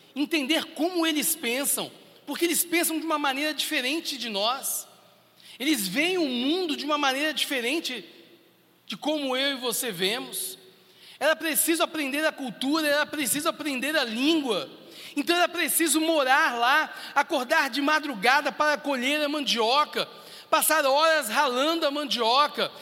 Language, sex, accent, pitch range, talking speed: Portuguese, male, Brazilian, 200-310 Hz, 140 wpm